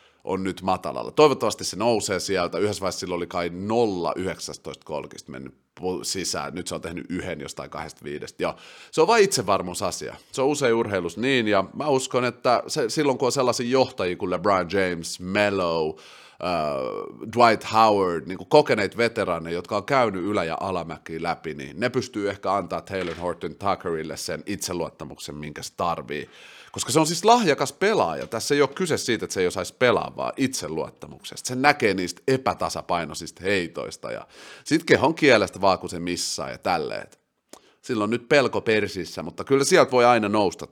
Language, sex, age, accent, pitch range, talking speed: Finnish, male, 30-49, native, 90-130 Hz, 170 wpm